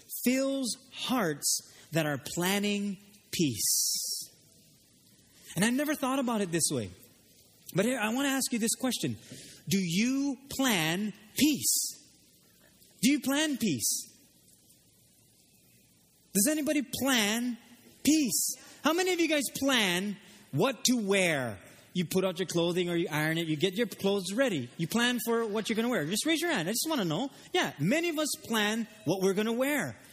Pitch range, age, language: 180-260 Hz, 30-49, English